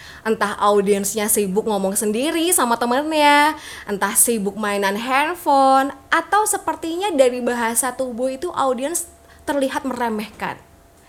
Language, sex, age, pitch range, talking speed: Indonesian, female, 20-39, 215-305 Hz, 110 wpm